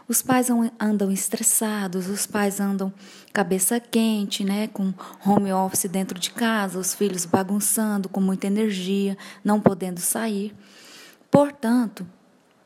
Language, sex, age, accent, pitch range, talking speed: Portuguese, female, 20-39, Brazilian, 195-235 Hz, 125 wpm